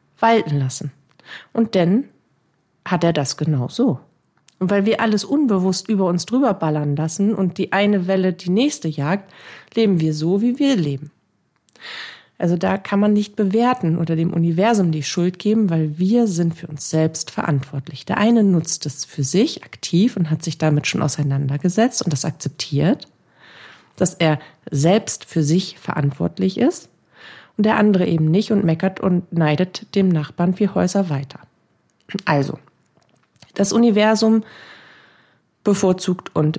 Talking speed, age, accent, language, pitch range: 155 wpm, 40-59, German, German, 155-210 Hz